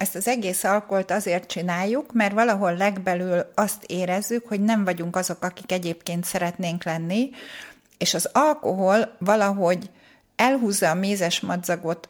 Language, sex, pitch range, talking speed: Hungarian, female, 175-225 Hz, 135 wpm